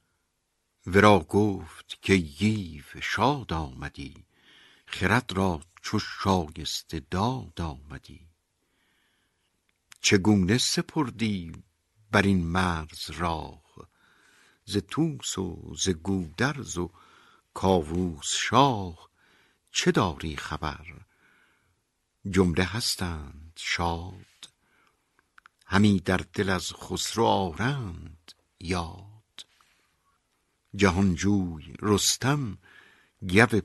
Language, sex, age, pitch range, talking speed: Persian, male, 60-79, 85-105 Hz, 75 wpm